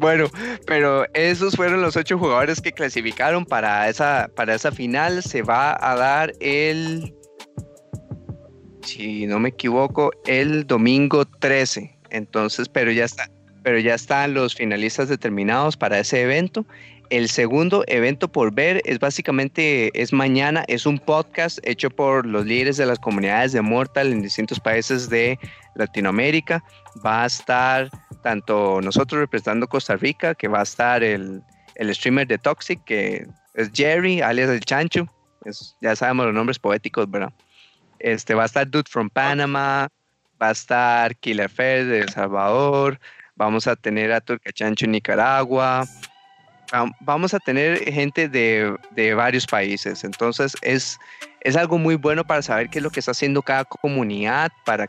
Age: 30-49